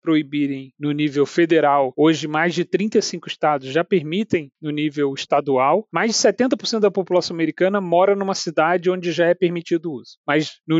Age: 30-49